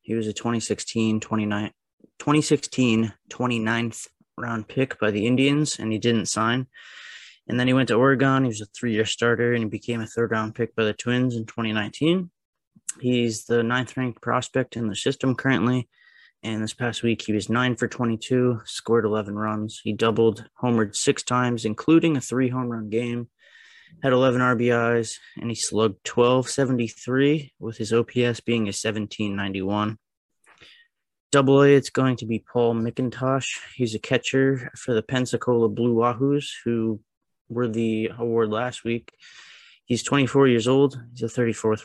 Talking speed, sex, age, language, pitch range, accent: 155 wpm, male, 20-39, English, 110-125 Hz, American